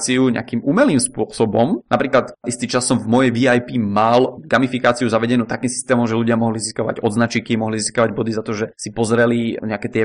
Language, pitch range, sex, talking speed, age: Czech, 110-130 Hz, male, 175 wpm, 20-39